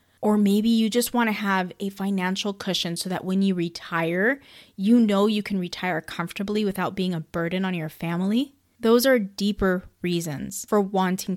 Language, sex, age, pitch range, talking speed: English, female, 20-39, 185-240 Hz, 180 wpm